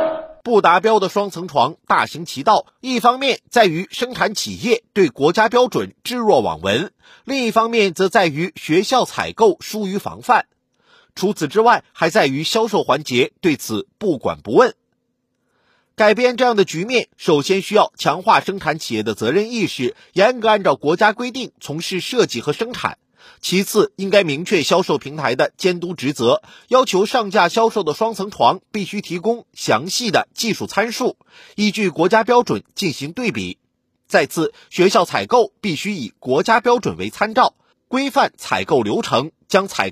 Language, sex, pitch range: Chinese, male, 175-240 Hz